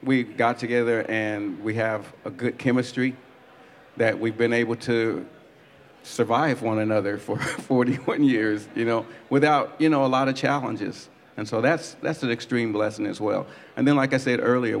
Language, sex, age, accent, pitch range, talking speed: English, male, 50-69, American, 110-130 Hz, 180 wpm